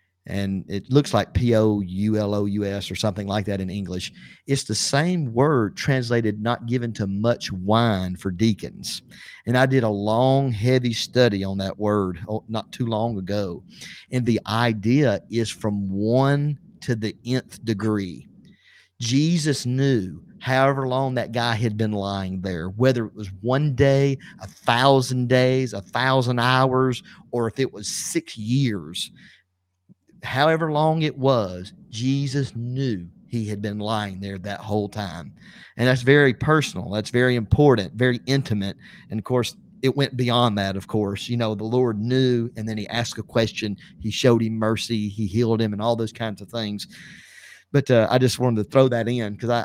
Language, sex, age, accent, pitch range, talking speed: English, male, 40-59, American, 105-130 Hz, 170 wpm